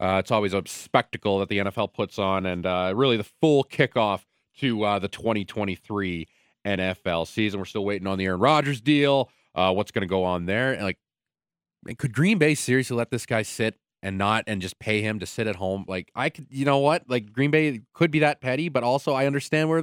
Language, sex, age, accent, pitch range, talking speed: English, male, 30-49, American, 95-135 Hz, 225 wpm